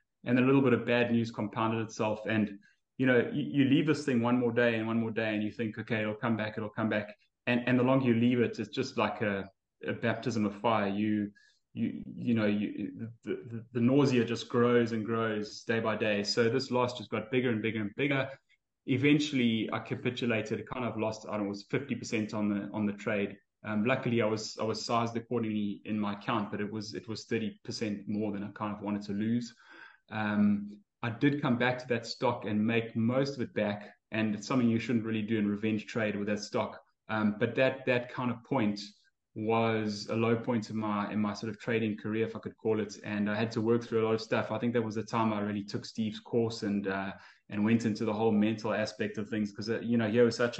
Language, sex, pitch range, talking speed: English, male, 105-120 Hz, 250 wpm